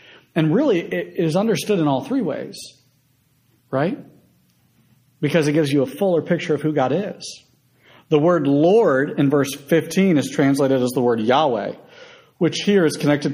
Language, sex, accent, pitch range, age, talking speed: English, male, American, 125-155 Hz, 50-69, 165 wpm